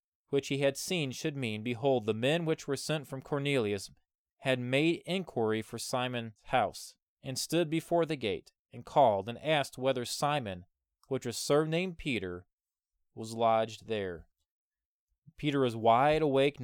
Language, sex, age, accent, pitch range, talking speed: English, male, 20-39, American, 110-150 Hz, 150 wpm